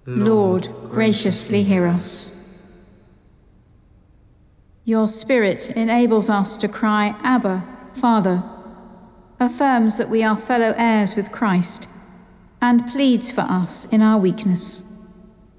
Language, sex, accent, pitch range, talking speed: English, female, British, 195-240 Hz, 105 wpm